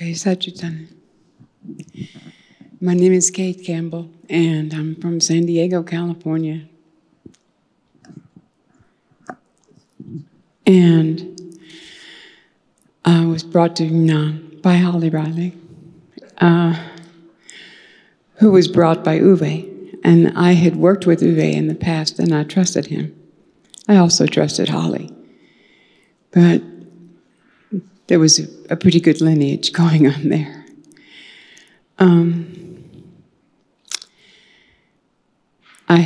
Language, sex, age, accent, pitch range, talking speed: Gujarati, female, 60-79, American, 160-180 Hz, 95 wpm